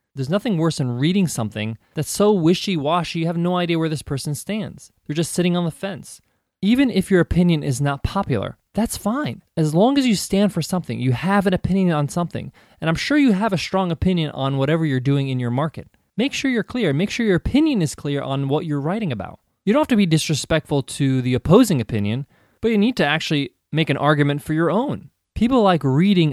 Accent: American